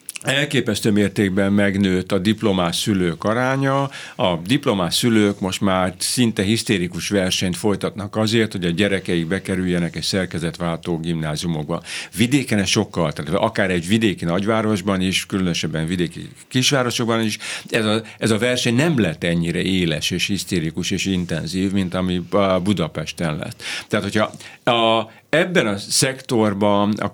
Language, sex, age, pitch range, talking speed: Hungarian, male, 60-79, 90-110 Hz, 135 wpm